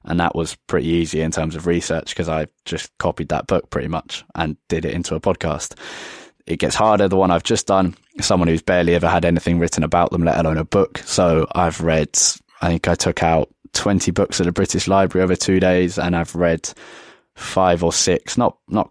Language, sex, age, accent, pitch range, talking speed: English, male, 20-39, British, 85-95 Hz, 220 wpm